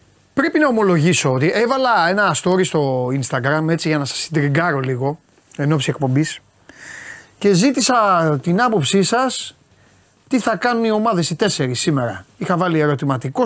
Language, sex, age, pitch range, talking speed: Greek, male, 30-49, 135-195 Hz, 150 wpm